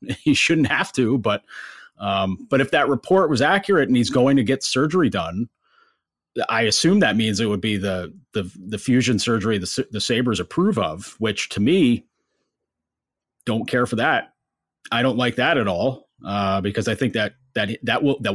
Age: 30-49